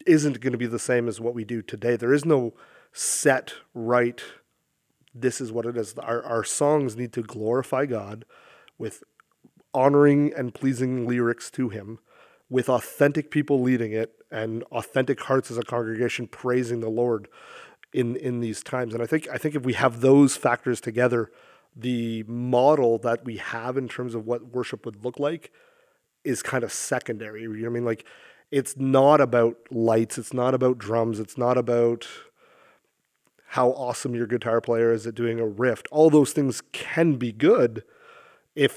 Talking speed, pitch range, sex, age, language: 180 wpm, 115-135 Hz, male, 30-49, English